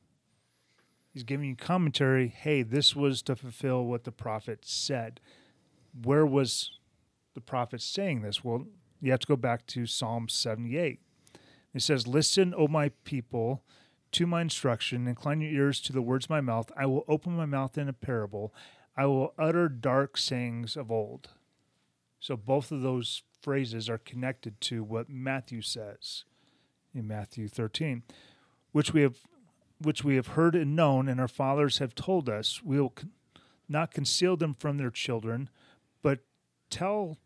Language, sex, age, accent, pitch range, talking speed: English, male, 30-49, American, 120-150 Hz, 160 wpm